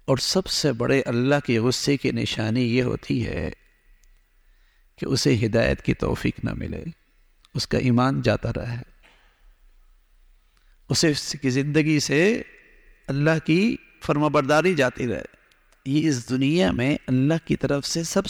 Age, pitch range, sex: 50-69, 115-150 Hz, male